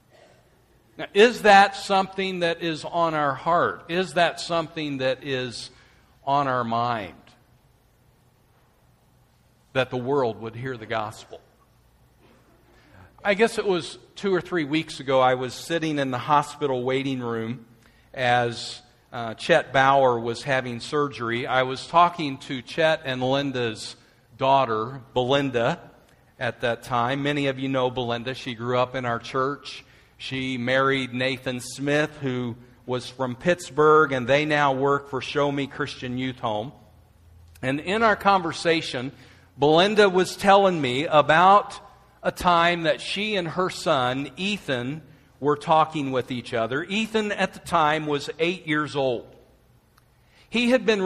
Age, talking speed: 50-69, 145 wpm